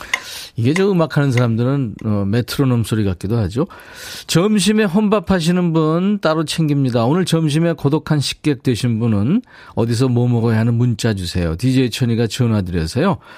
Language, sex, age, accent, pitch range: Korean, male, 40-59, native, 110-155 Hz